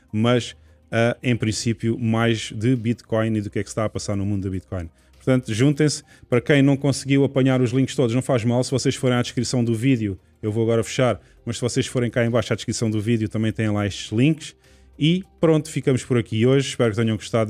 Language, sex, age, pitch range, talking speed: Portuguese, male, 20-39, 105-125 Hz, 235 wpm